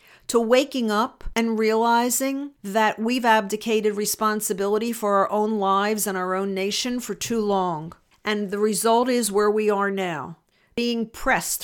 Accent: American